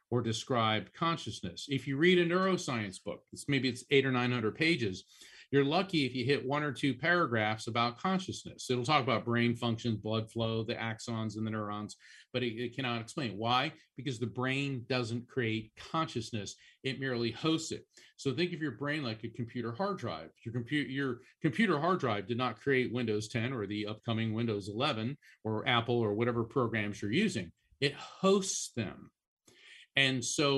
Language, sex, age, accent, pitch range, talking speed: English, male, 40-59, American, 115-145 Hz, 185 wpm